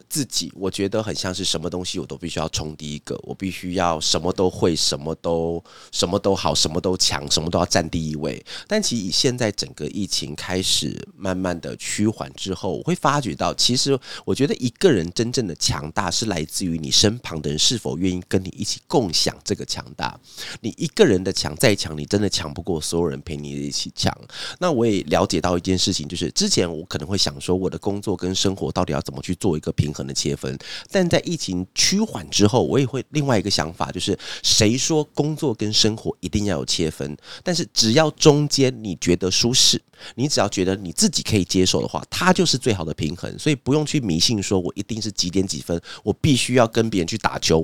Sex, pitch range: male, 80-110 Hz